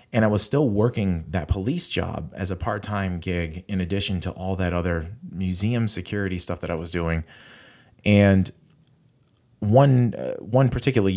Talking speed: 160 wpm